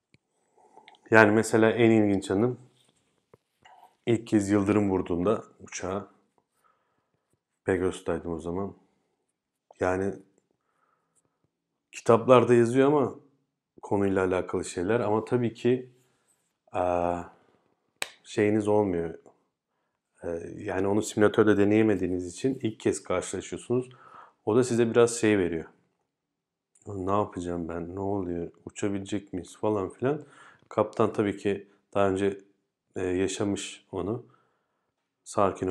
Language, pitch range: Turkish, 90-110 Hz